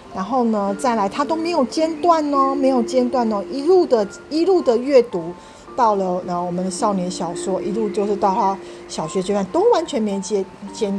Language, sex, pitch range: Chinese, female, 180-235 Hz